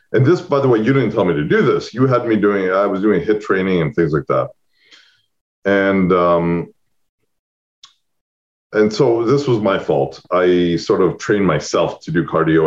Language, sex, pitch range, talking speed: English, male, 85-120 Hz, 195 wpm